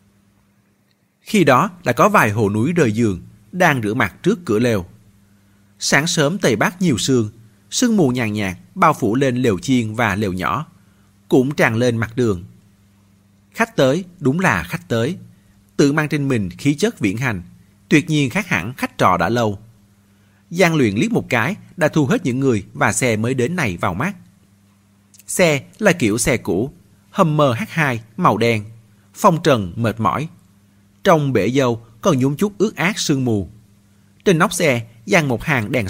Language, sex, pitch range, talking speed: Vietnamese, male, 100-150 Hz, 180 wpm